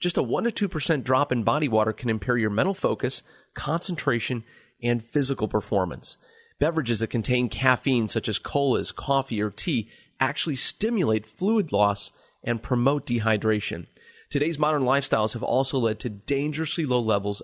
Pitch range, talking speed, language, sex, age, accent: 110-145 Hz, 155 wpm, English, male, 30-49, American